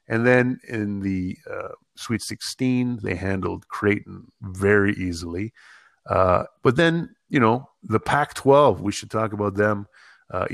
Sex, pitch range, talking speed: male, 95-115 Hz, 150 wpm